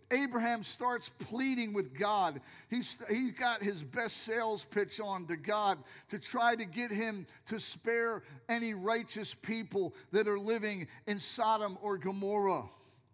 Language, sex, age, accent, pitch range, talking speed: English, male, 50-69, American, 170-230 Hz, 145 wpm